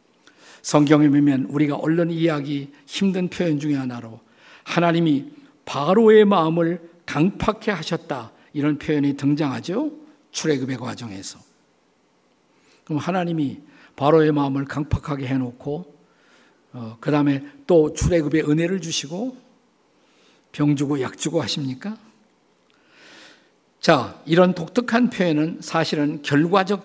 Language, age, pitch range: Korean, 50-69, 150-205 Hz